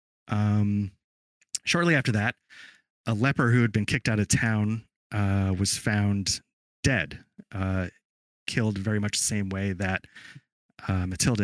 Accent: American